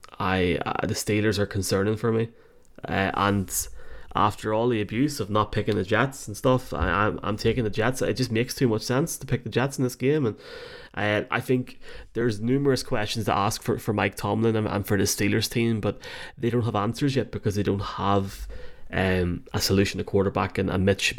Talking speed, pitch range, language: 220 wpm, 95-115 Hz, English